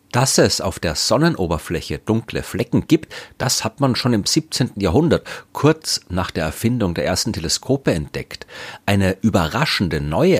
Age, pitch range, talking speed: 40-59, 100-135 Hz, 150 wpm